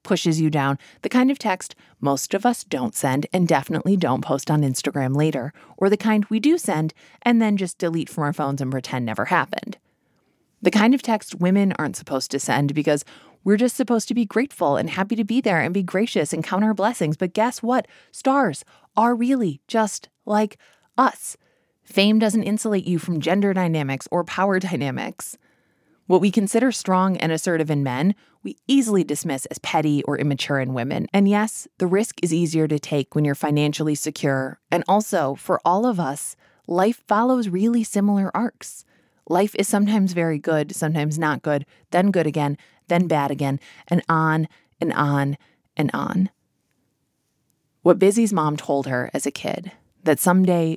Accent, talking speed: American, 180 wpm